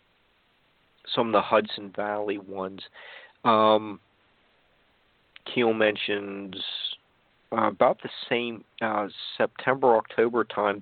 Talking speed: 95 wpm